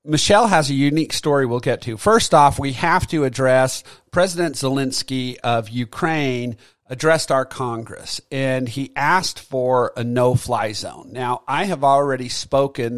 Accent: American